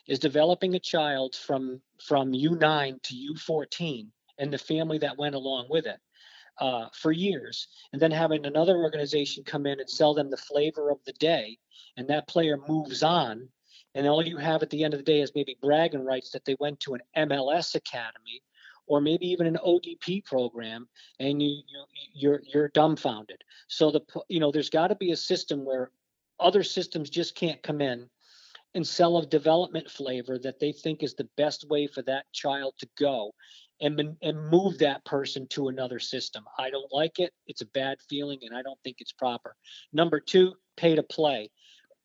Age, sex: 50-69, male